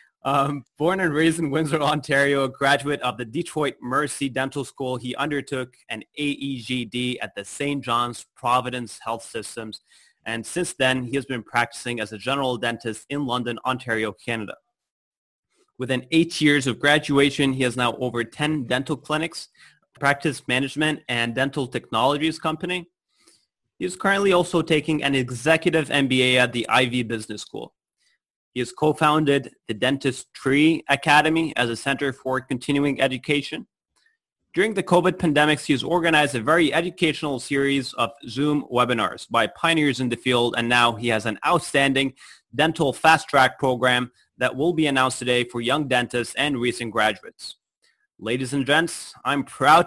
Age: 20-39